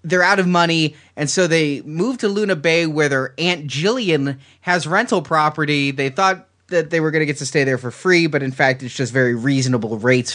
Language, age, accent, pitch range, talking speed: English, 30-49, American, 135-185 Hz, 225 wpm